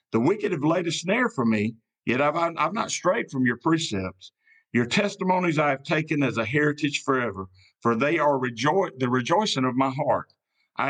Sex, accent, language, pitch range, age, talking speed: male, American, English, 115-155 Hz, 50-69, 195 wpm